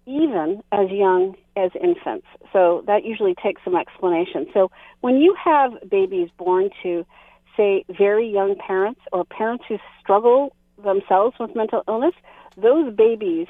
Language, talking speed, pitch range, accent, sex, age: English, 140 wpm, 190-250 Hz, American, female, 40-59